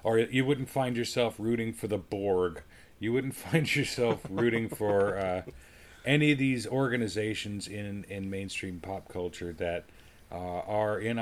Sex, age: male, 40-59